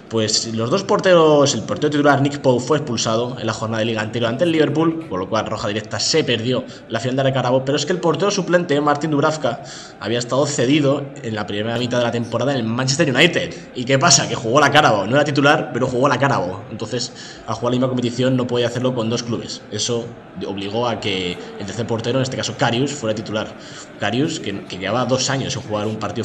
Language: Spanish